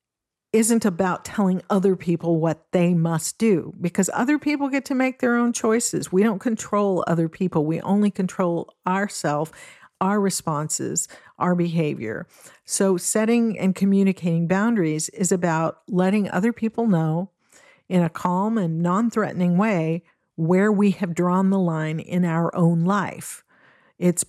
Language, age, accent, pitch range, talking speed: English, 50-69, American, 170-205 Hz, 145 wpm